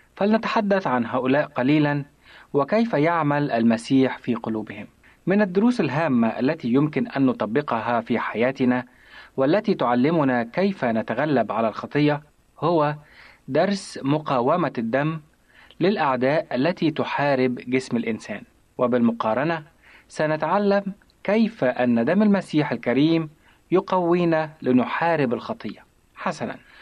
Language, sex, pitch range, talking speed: Arabic, male, 125-170 Hz, 100 wpm